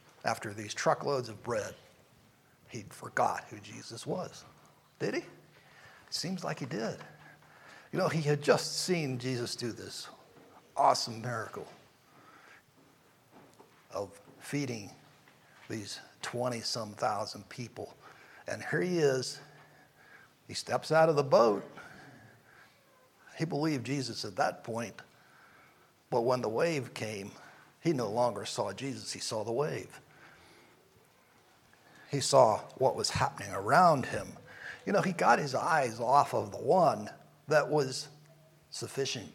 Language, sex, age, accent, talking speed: English, male, 60-79, American, 130 wpm